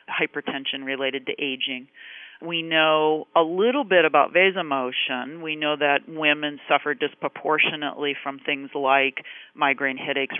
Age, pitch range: 40-59, 140-160 Hz